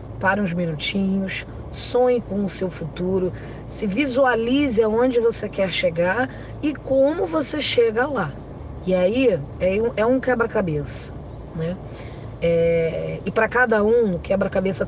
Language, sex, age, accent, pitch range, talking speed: Portuguese, female, 20-39, Brazilian, 165-215 Hz, 125 wpm